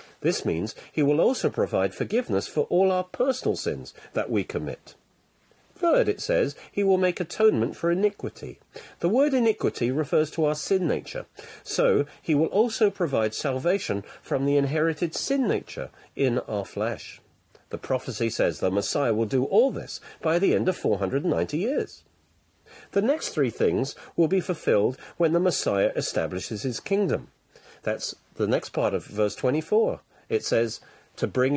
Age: 50-69